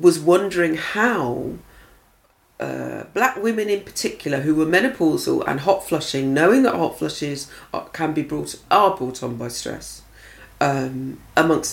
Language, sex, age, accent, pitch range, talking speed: English, female, 40-59, British, 135-195 Hz, 145 wpm